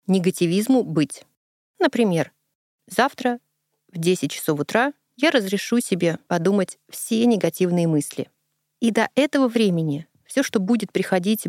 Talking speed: 120 wpm